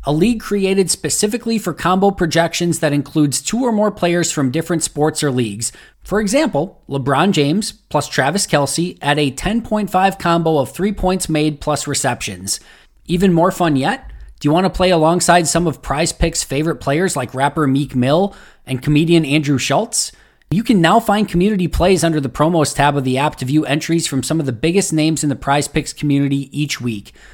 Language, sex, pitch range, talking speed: English, male, 135-170 Hz, 195 wpm